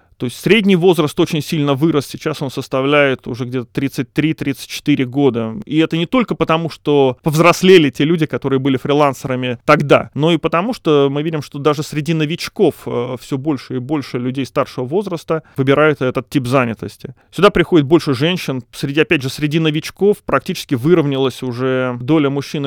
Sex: male